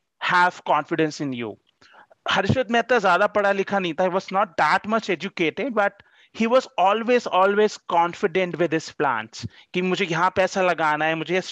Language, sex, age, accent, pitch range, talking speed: English, male, 30-49, Indian, 170-210 Hz, 115 wpm